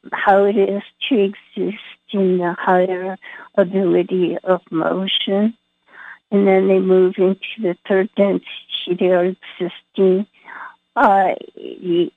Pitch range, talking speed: 180-195 Hz, 115 wpm